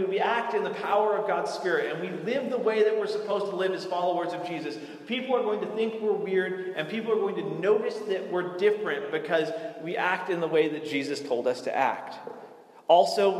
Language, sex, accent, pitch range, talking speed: English, male, American, 155-215 Hz, 230 wpm